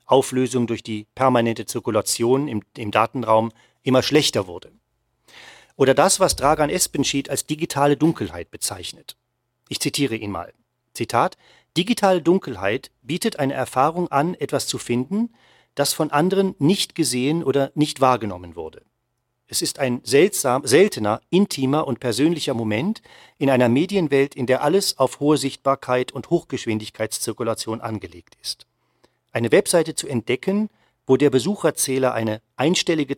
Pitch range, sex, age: 120-155 Hz, male, 40-59